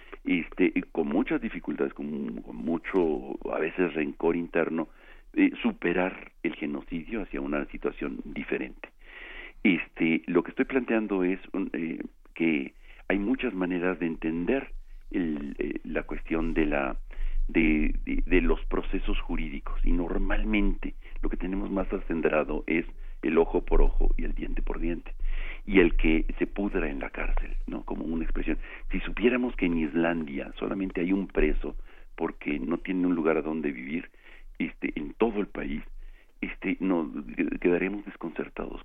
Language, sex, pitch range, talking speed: Spanish, male, 85-110 Hz, 150 wpm